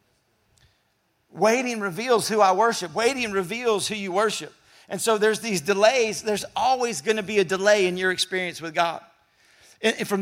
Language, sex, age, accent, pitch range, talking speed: English, male, 50-69, American, 185-220 Hz, 170 wpm